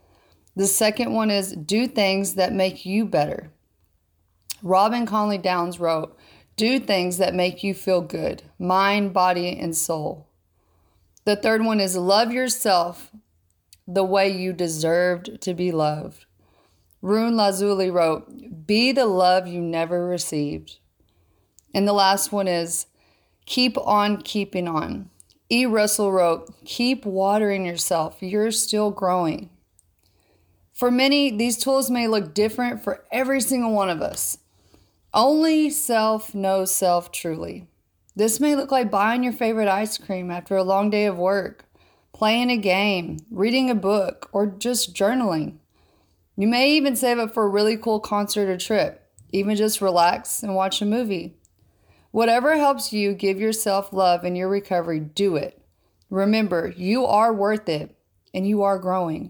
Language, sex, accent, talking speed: English, female, American, 150 wpm